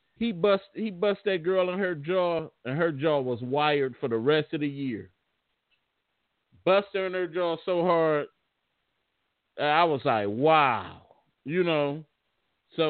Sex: male